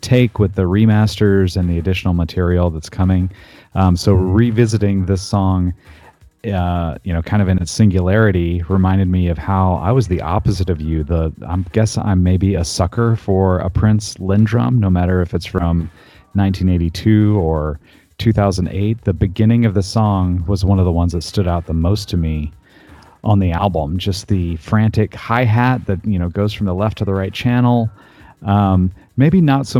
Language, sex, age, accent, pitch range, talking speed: English, male, 30-49, American, 85-105 Hz, 185 wpm